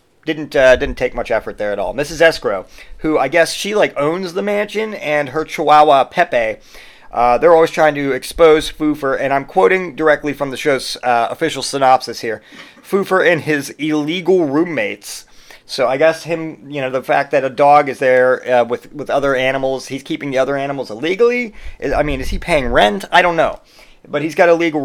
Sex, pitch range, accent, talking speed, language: male, 125-155 Hz, American, 200 wpm, English